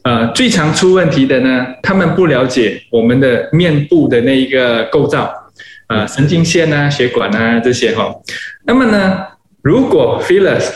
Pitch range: 130-180 Hz